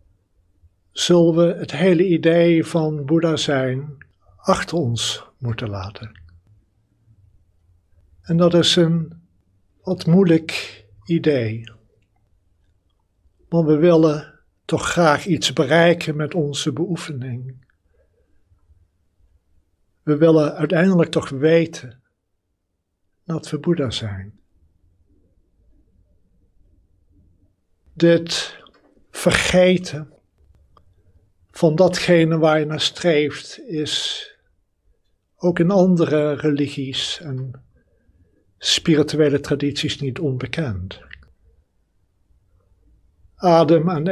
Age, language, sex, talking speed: 60-79, Dutch, male, 80 wpm